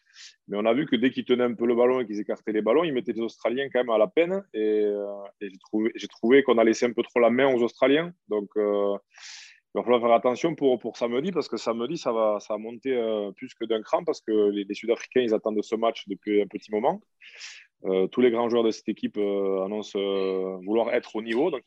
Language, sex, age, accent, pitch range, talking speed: French, male, 20-39, French, 105-125 Hz, 265 wpm